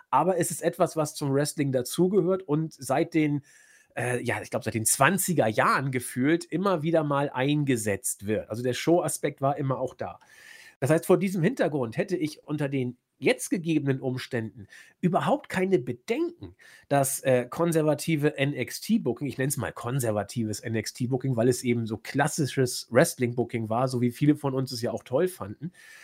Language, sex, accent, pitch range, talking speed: German, male, German, 125-165 Hz, 175 wpm